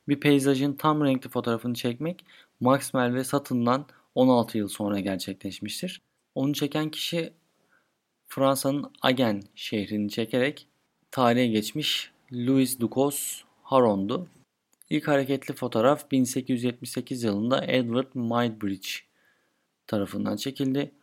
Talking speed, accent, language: 95 wpm, native, Turkish